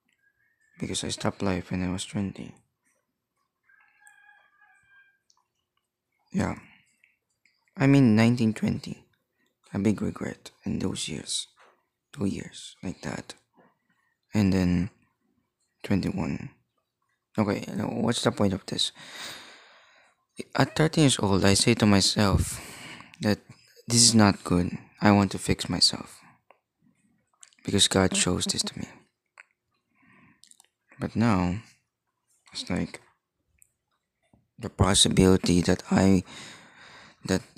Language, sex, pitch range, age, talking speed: English, male, 95-120 Hz, 20-39, 100 wpm